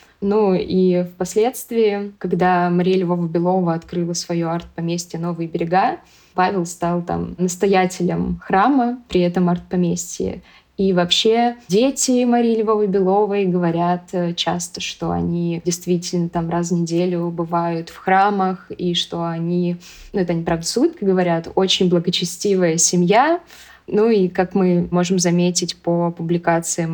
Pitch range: 175-205 Hz